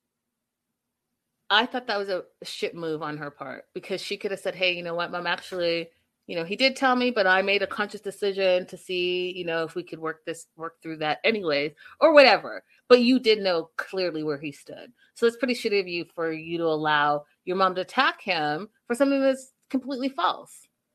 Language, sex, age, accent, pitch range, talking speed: English, female, 30-49, American, 175-250 Hz, 220 wpm